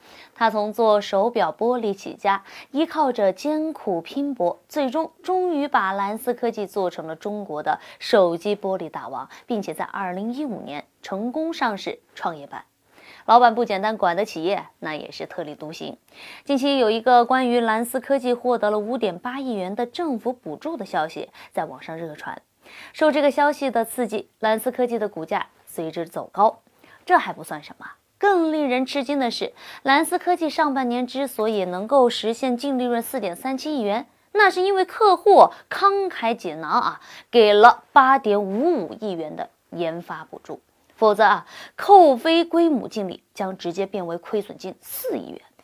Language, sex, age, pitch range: Chinese, female, 20-39, 205-295 Hz